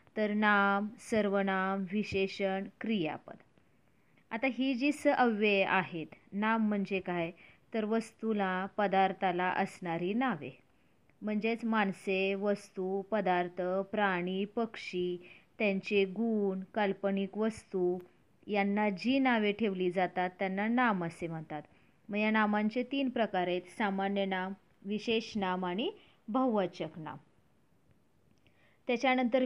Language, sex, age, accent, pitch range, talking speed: Marathi, female, 30-49, native, 190-220 Hz, 100 wpm